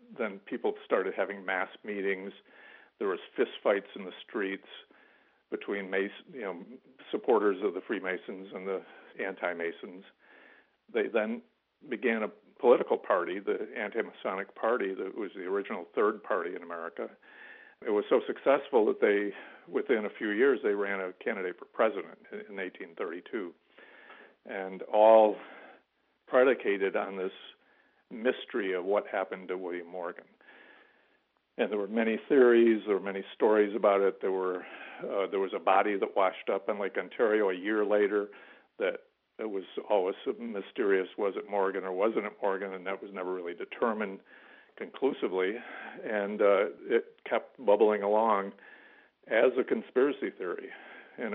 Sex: male